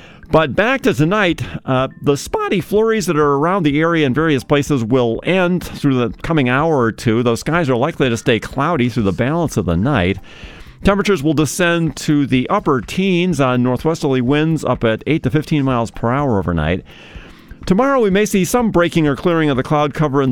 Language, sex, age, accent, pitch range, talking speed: English, male, 40-59, American, 120-165 Hz, 205 wpm